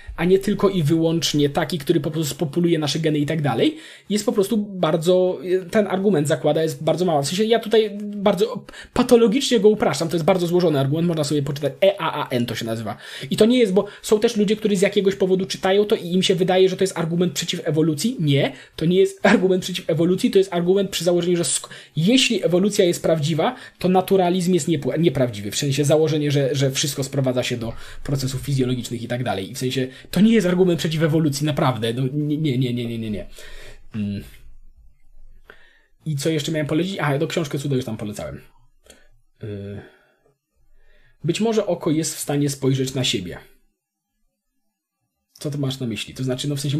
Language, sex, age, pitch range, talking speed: Polish, male, 20-39, 135-185 Hz, 200 wpm